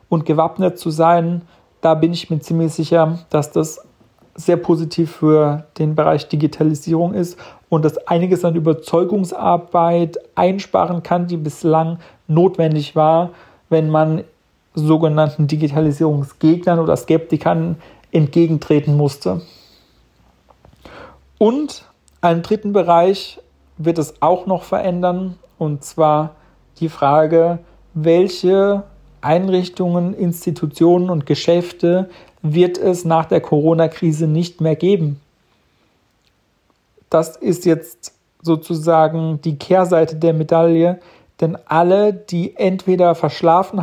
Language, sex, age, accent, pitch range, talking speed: German, male, 40-59, German, 160-180 Hz, 105 wpm